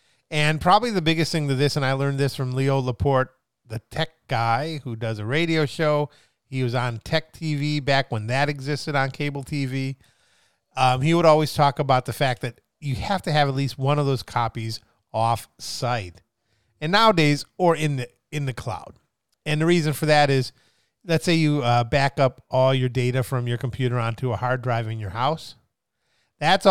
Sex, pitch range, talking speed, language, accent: male, 125-150 Hz, 195 wpm, English, American